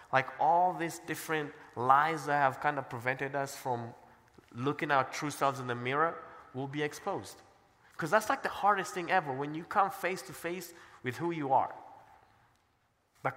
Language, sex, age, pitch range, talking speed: English, male, 20-39, 125-165 Hz, 185 wpm